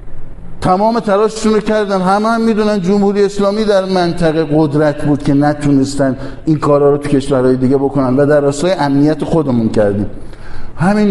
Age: 50-69